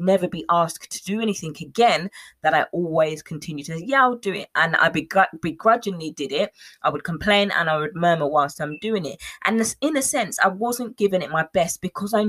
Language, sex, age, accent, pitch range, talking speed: English, female, 20-39, British, 155-205 Hz, 215 wpm